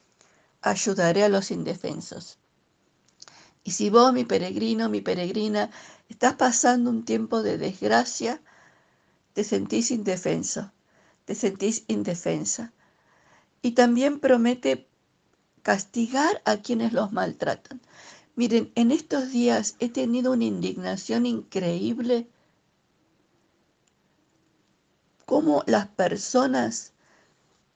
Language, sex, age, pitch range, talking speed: Spanish, female, 50-69, 185-245 Hz, 95 wpm